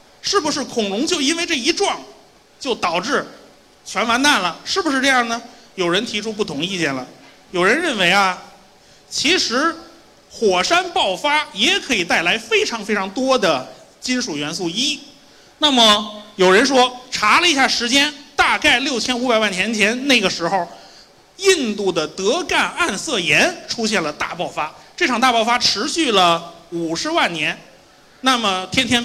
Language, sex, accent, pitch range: Chinese, male, native, 195-290 Hz